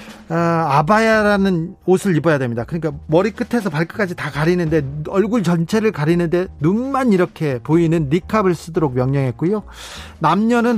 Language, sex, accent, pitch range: Korean, male, native, 150-210 Hz